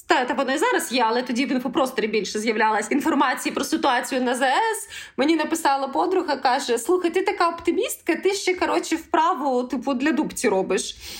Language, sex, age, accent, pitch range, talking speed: Ukrainian, female, 20-39, native, 265-360 Hz, 175 wpm